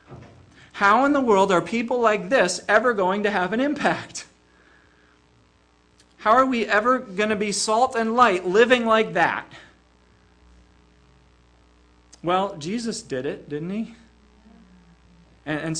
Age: 40-59